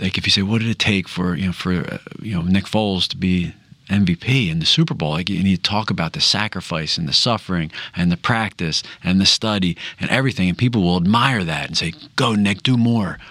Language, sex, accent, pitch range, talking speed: English, male, American, 90-120 Hz, 245 wpm